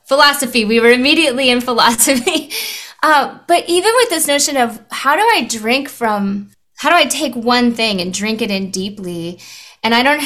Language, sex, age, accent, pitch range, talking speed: English, female, 20-39, American, 195-250 Hz, 185 wpm